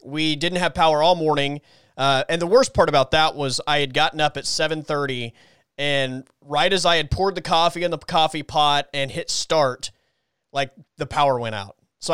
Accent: American